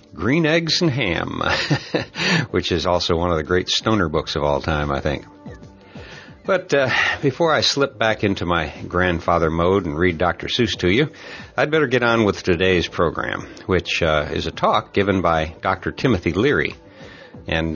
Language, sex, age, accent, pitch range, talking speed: English, male, 60-79, American, 85-115 Hz, 175 wpm